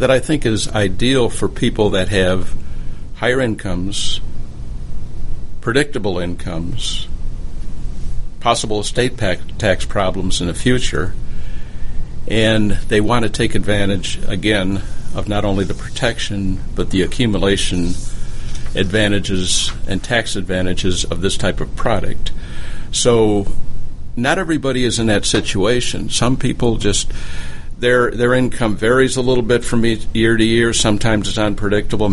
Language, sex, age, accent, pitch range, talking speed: English, male, 60-79, American, 90-115 Hz, 125 wpm